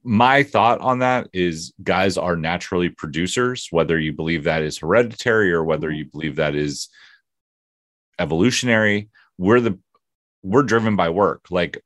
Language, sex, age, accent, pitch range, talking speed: English, male, 30-49, American, 80-100 Hz, 145 wpm